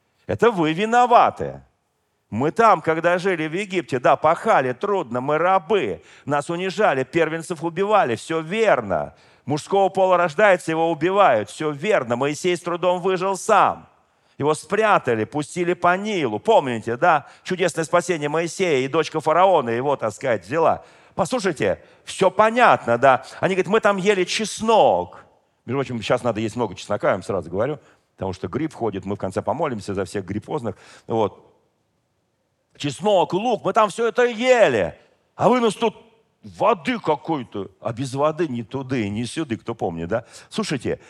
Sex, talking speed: male, 155 wpm